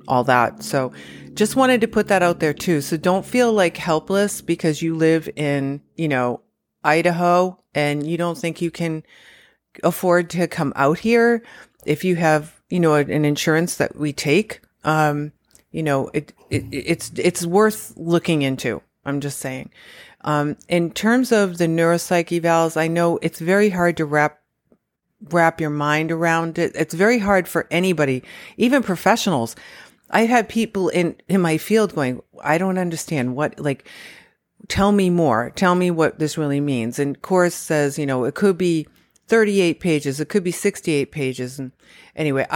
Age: 40-59